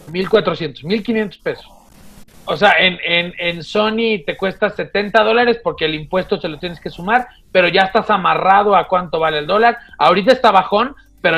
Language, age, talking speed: Spanish, 40-59, 180 wpm